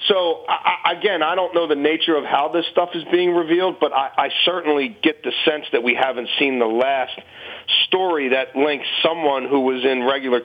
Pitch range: 130-160 Hz